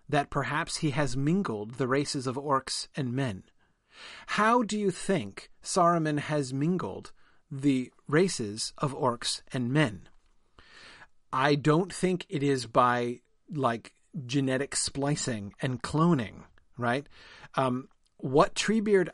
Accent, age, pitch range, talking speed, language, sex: American, 40-59, 140-195 Hz, 120 wpm, English, male